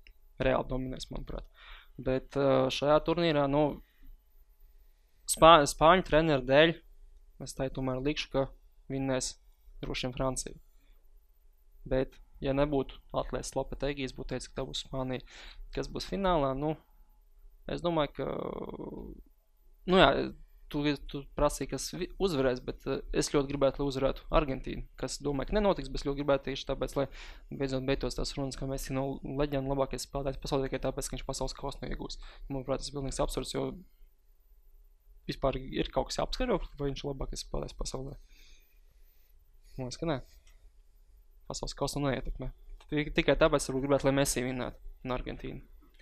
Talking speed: 140 wpm